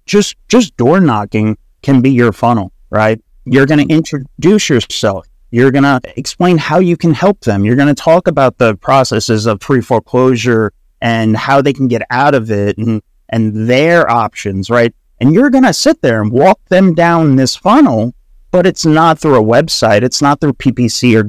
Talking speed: 190 wpm